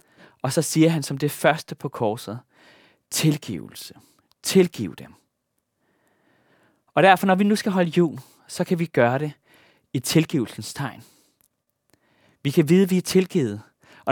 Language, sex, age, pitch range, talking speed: Danish, male, 30-49, 120-180 Hz, 155 wpm